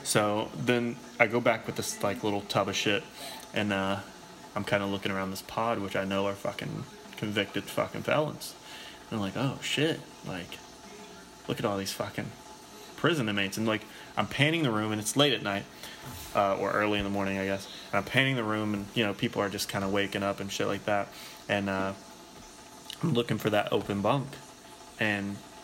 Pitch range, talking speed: 100-125 Hz, 210 wpm